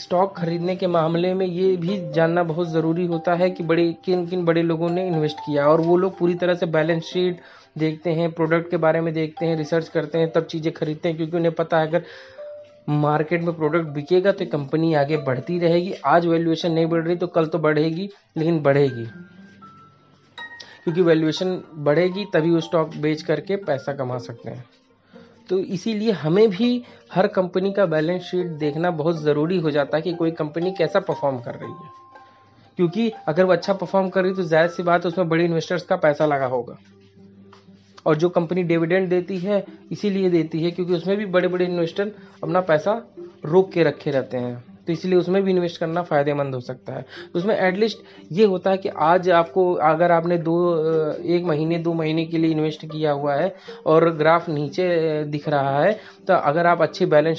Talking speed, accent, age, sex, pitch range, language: 195 wpm, native, 20-39, male, 155-180 Hz, Hindi